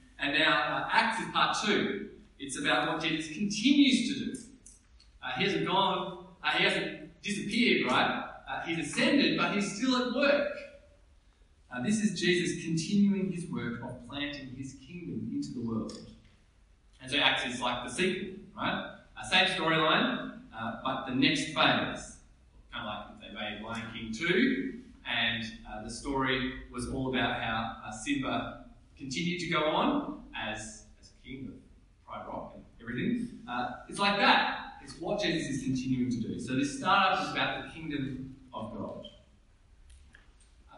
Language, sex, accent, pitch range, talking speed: English, male, Australian, 115-190 Hz, 165 wpm